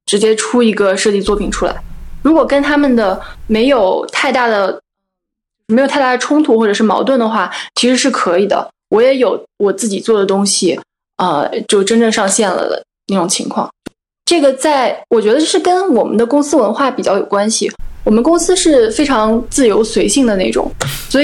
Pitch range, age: 210-275 Hz, 10-29